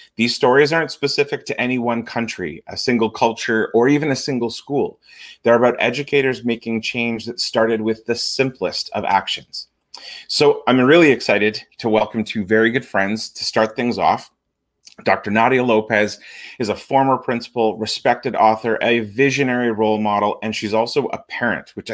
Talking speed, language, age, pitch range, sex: 165 wpm, English, 30-49, 110-135 Hz, male